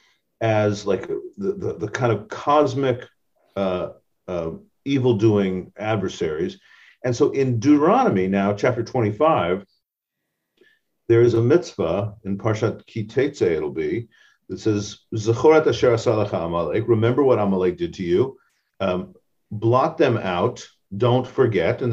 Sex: male